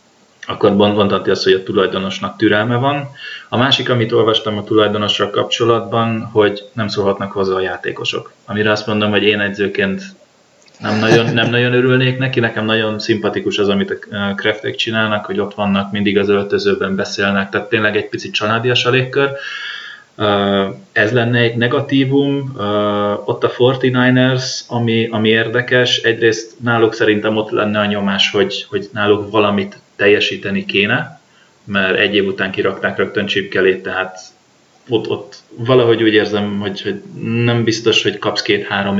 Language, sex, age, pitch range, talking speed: Hungarian, male, 20-39, 100-125 Hz, 150 wpm